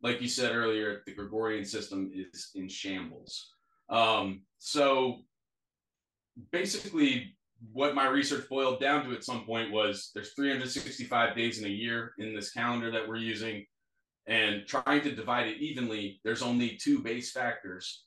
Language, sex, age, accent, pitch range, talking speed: English, male, 30-49, American, 105-125 Hz, 155 wpm